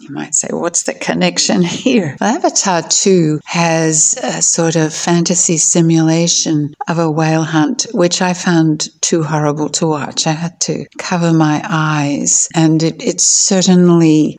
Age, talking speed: 60-79, 155 wpm